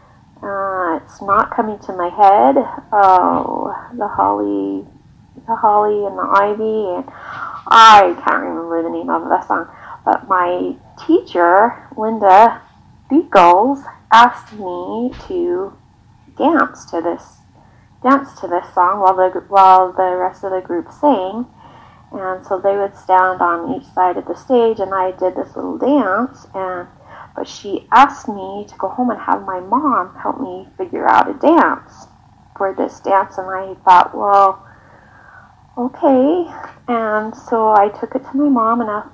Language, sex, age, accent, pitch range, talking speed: English, female, 30-49, American, 185-235 Hz, 155 wpm